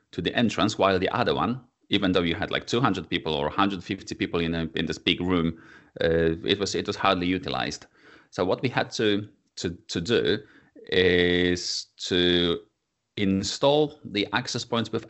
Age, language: 30-49, English